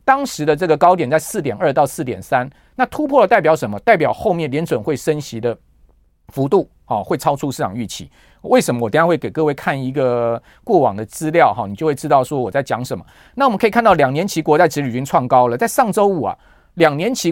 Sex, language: male, Chinese